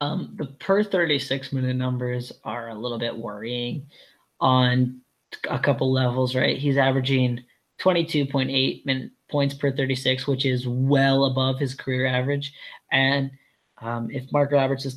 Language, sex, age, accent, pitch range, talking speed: English, male, 10-29, American, 130-145 Hz, 135 wpm